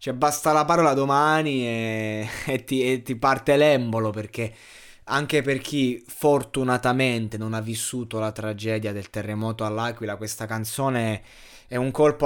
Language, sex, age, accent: Italian, male, 20-39, native